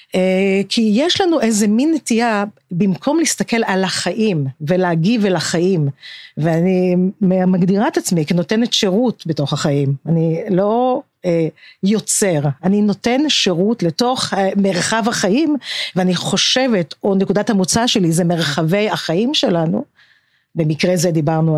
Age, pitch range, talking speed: 50-69, 170-225 Hz, 130 wpm